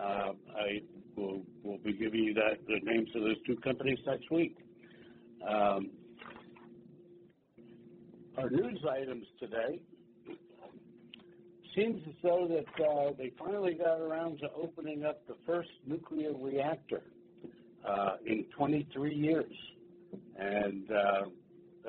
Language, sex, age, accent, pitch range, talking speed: English, male, 60-79, American, 110-150 Hz, 120 wpm